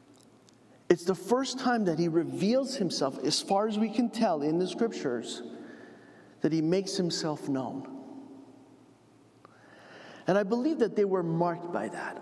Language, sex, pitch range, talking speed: English, male, 175-265 Hz, 150 wpm